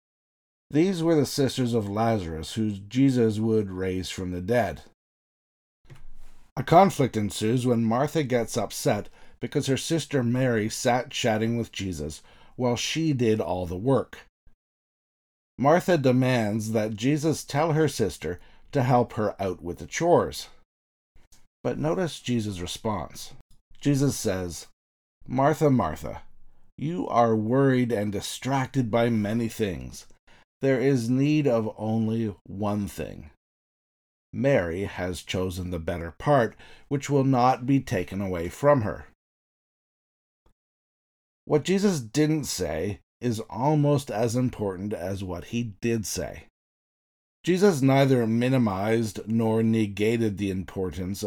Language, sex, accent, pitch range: English, male, American, 95-135 Hz